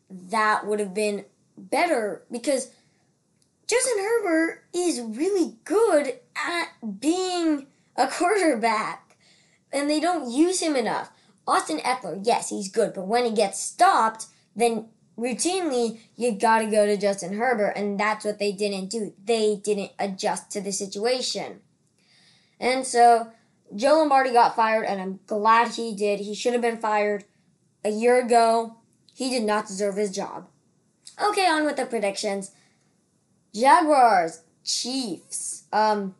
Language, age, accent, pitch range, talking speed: English, 20-39, American, 210-250 Hz, 140 wpm